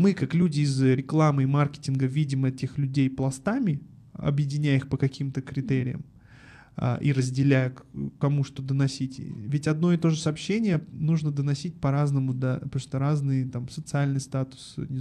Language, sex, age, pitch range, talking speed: Russian, male, 20-39, 135-165 Hz, 145 wpm